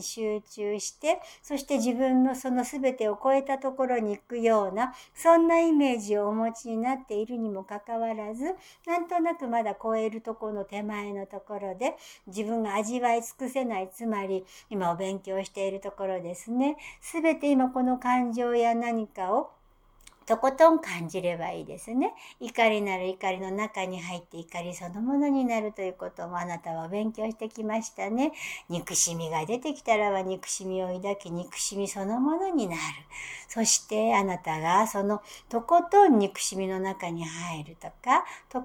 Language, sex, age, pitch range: Japanese, male, 60-79, 185-255 Hz